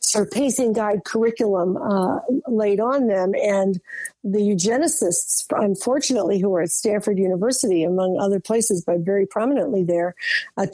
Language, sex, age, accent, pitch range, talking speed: English, female, 50-69, American, 195-235 Hz, 140 wpm